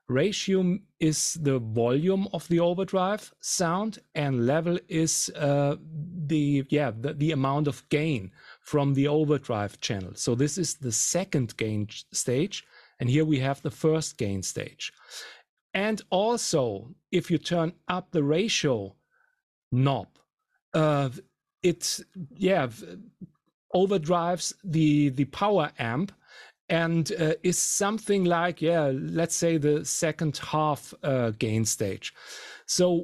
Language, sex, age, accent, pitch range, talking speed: English, male, 40-59, German, 135-180 Hz, 125 wpm